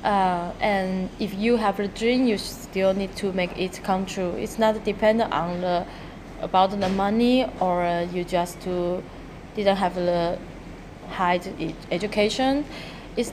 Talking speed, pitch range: 160 wpm, 185-225 Hz